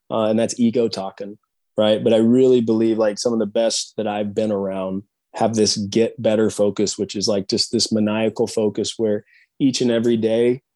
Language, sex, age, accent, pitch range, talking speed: English, male, 20-39, American, 105-115 Hz, 200 wpm